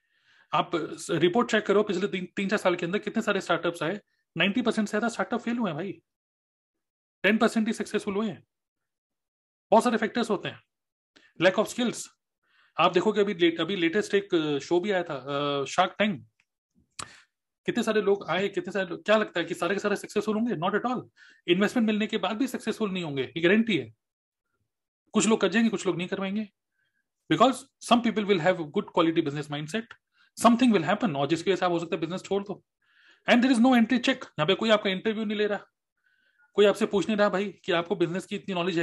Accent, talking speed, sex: native, 130 wpm, male